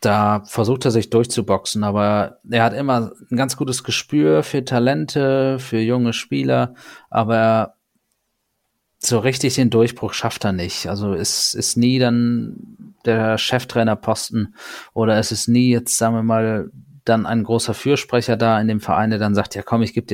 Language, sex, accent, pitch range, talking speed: German, male, German, 100-120 Hz, 170 wpm